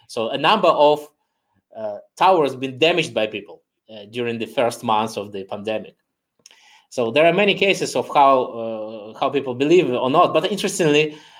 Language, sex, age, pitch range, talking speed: Hungarian, male, 20-39, 120-160 Hz, 175 wpm